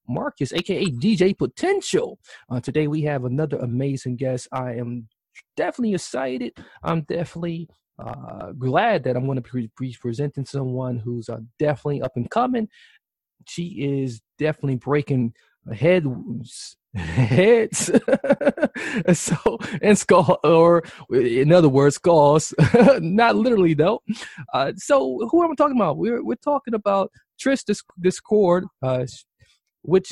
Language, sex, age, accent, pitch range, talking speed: English, male, 20-39, American, 125-195 Hz, 130 wpm